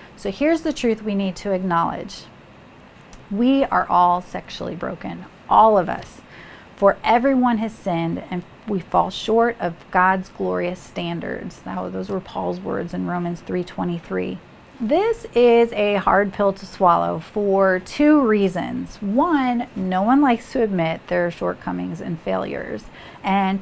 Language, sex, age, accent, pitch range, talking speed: English, female, 40-59, American, 185-245 Hz, 145 wpm